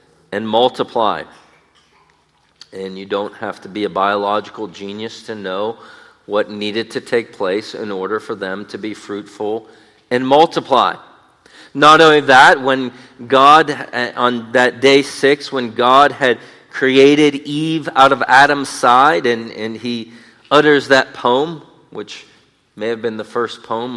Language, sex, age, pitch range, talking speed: English, male, 40-59, 125-170 Hz, 145 wpm